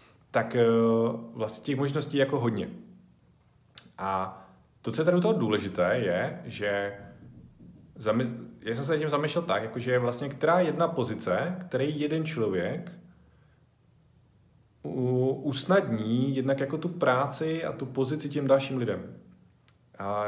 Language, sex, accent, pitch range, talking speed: Czech, male, native, 110-135 Hz, 130 wpm